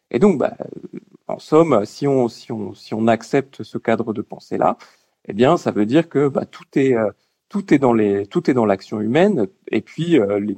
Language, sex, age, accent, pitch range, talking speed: French, male, 40-59, French, 110-135 Hz, 210 wpm